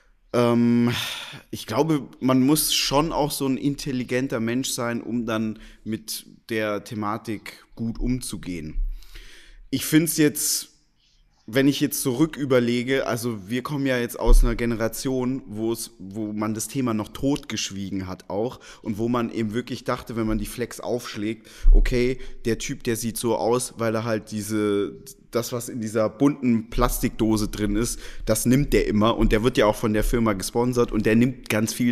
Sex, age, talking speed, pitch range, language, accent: male, 20-39, 170 wpm, 110-135 Hz, German, German